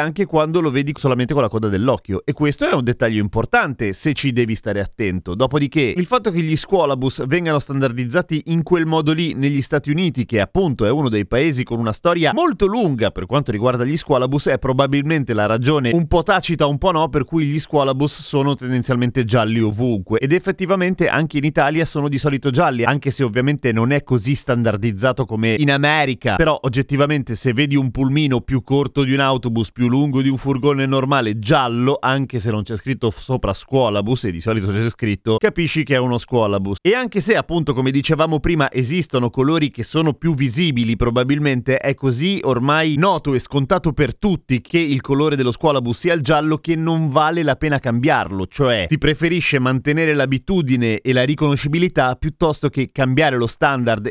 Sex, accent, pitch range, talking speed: male, native, 125-155 Hz, 190 wpm